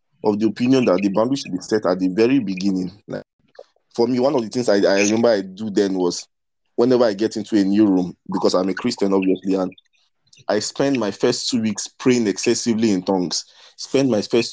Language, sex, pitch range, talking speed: English, male, 100-120 Hz, 220 wpm